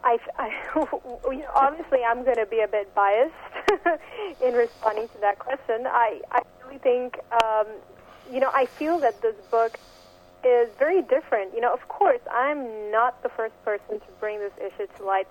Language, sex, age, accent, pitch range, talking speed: English, female, 30-49, American, 215-275 Hz, 170 wpm